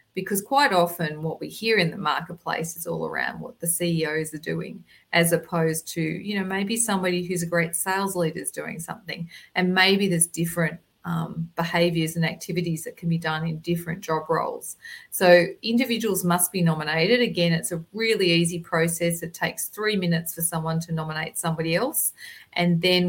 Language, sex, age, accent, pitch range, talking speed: English, female, 40-59, Australian, 165-185 Hz, 185 wpm